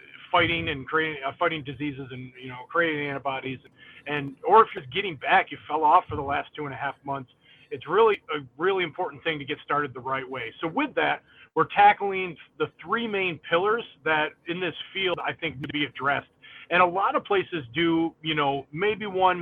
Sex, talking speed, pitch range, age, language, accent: male, 215 wpm, 140-180 Hz, 30-49, English, American